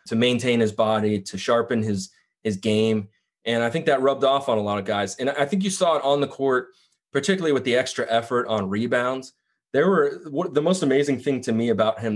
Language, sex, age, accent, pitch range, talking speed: English, male, 20-39, American, 110-140 Hz, 225 wpm